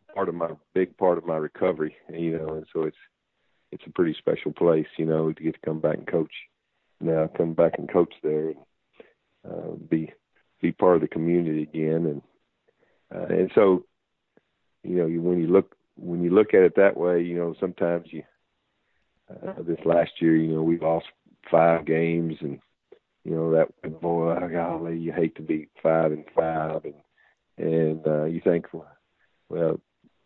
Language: English